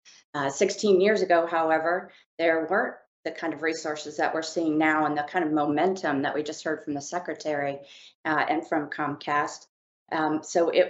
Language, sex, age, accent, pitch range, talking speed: English, female, 40-59, American, 150-175 Hz, 185 wpm